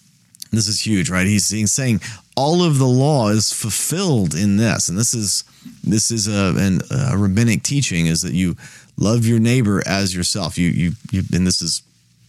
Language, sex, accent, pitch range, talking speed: English, male, American, 95-120 Hz, 185 wpm